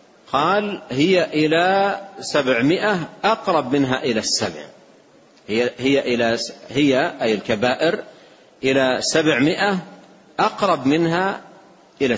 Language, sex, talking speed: Arabic, male, 95 wpm